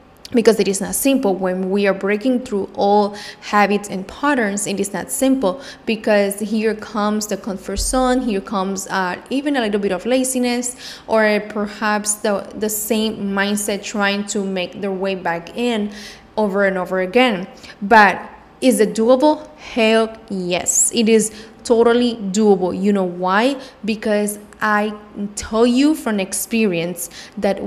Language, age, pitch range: English, 20-39, 195-235 Hz